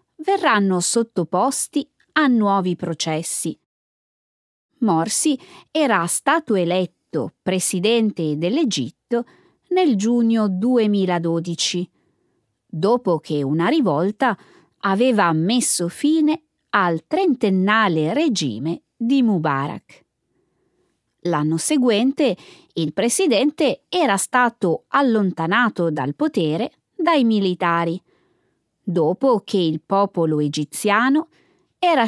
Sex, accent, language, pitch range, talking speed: female, native, Italian, 170-270 Hz, 80 wpm